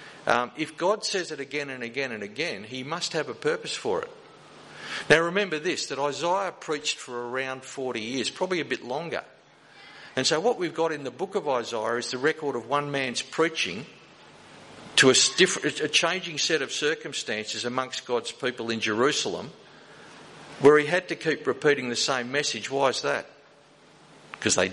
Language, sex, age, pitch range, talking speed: English, male, 50-69, 125-155 Hz, 180 wpm